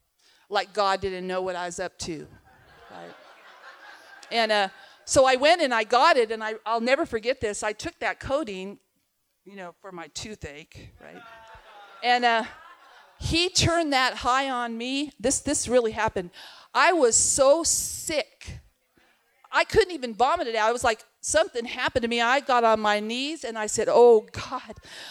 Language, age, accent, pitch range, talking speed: English, 50-69, American, 225-315 Hz, 175 wpm